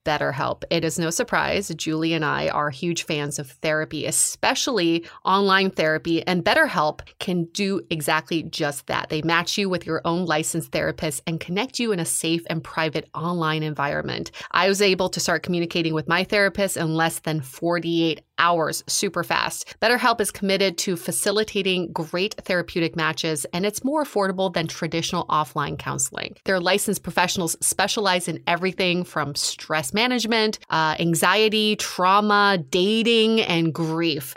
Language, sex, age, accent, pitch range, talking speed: English, female, 30-49, American, 160-195 Hz, 155 wpm